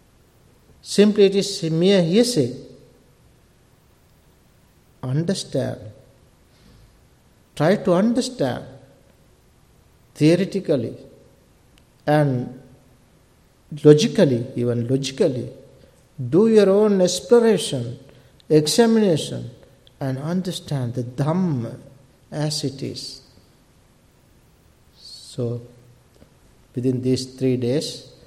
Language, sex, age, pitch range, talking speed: English, male, 60-79, 130-180 Hz, 70 wpm